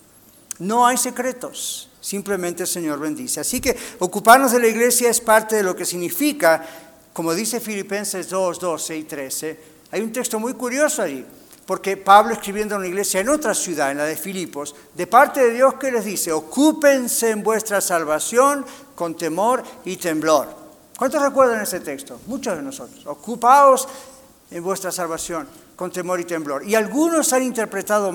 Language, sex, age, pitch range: Spanish, male, 50-69, 170-245 Hz